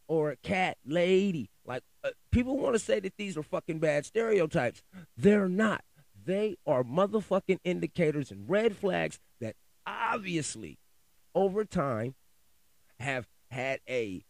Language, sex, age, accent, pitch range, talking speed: English, male, 30-49, American, 125-190 Hz, 135 wpm